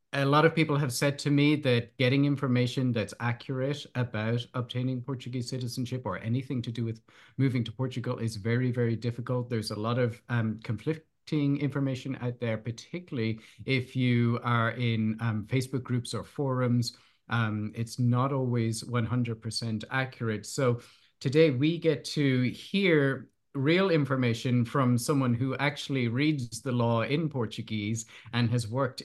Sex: male